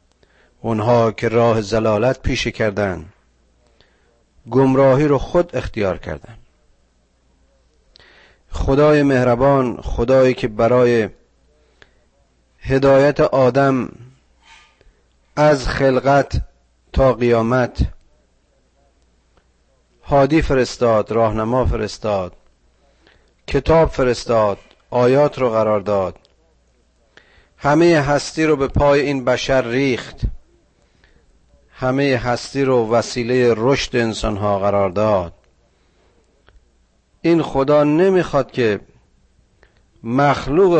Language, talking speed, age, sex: Persian, 80 wpm, 40-59, male